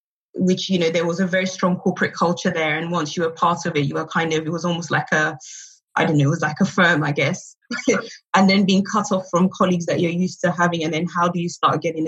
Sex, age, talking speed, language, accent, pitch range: female, 20-39, 280 wpm, English, British, 160-180 Hz